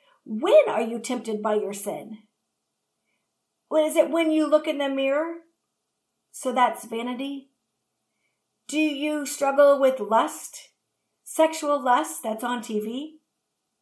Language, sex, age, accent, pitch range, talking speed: English, female, 50-69, American, 225-300 Hz, 120 wpm